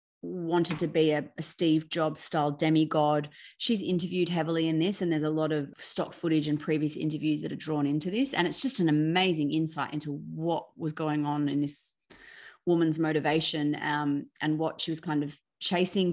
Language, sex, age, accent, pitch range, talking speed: English, female, 30-49, Australian, 150-170 Hz, 195 wpm